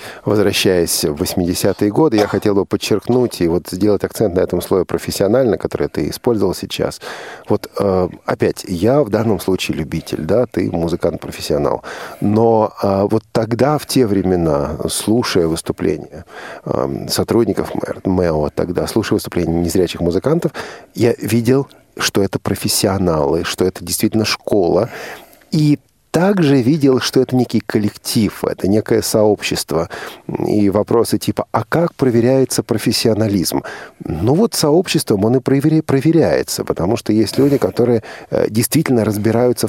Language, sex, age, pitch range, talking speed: Russian, male, 40-59, 100-130 Hz, 130 wpm